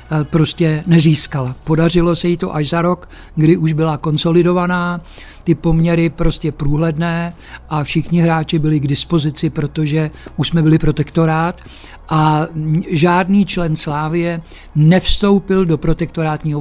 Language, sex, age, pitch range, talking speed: Czech, male, 60-79, 155-175 Hz, 125 wpm